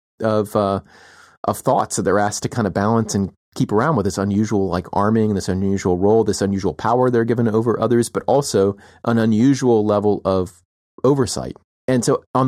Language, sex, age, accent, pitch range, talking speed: English, male, 30-49, American, 90-110 Hz, 190 wpm